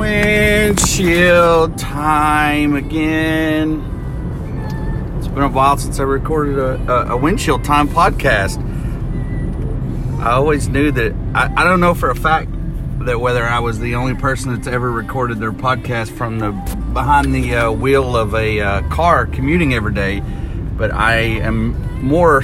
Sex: male